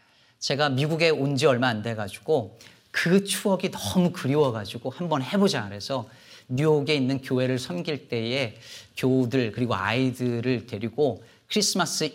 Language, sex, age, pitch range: Korean, male, 40-59, 115-155 Hz